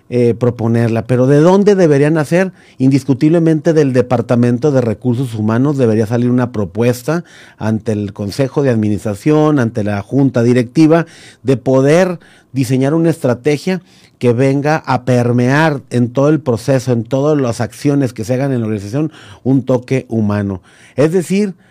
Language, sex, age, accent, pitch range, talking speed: Spanish, male, 40-59, Mexican, 120-150 Hz, 150 wpm